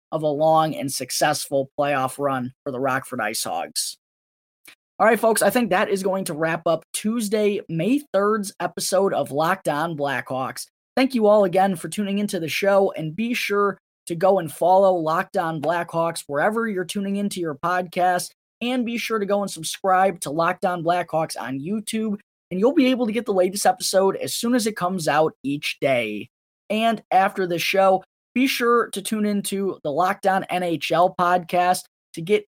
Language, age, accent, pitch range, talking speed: English, 20-39, American, 165-210 Hz, 185 wpm